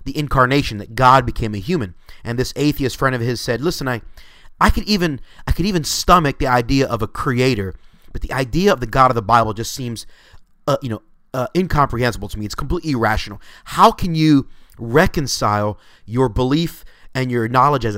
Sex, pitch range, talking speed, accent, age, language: male, 110-140 Hz, 195 wpm, American, 30-49, English